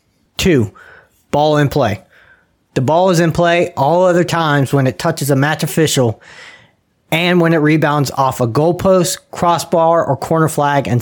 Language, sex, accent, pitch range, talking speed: English, male, American, 125-165 Hz, 165 wpm